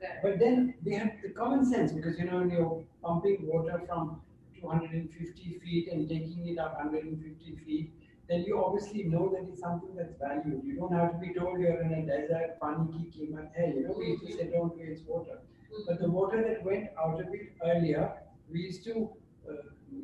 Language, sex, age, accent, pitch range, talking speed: English, male, 60-79, Indian, 155-185 Hz, 220 wpm